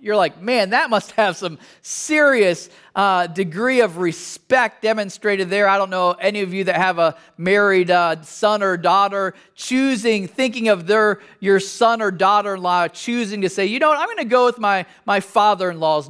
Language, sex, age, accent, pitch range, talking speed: English, male, 40-59, American, 180-230 Hz, 185 wpm